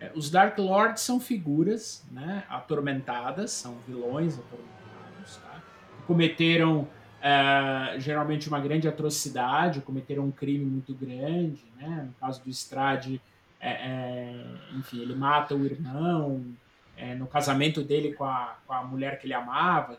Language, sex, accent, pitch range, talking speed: Portuguese, male, Brazilian, 130-165 Hz, 140 wpm